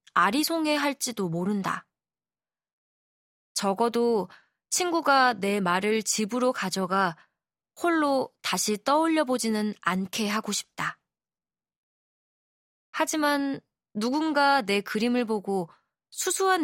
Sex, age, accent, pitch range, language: female, 20-39, native, 200-275 Hz, Korean